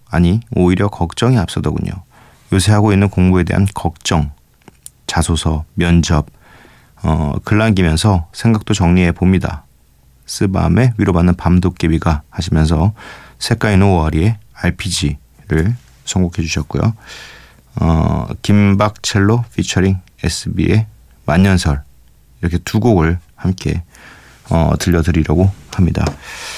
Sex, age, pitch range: male, 40-59, 80-105 Hz